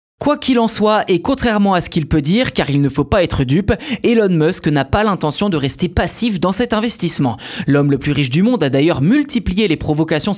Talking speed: 230 wpm